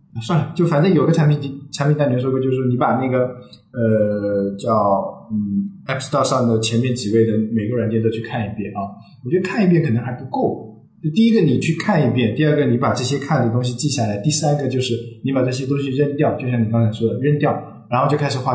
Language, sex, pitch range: Chinese, male, 120-175 Hz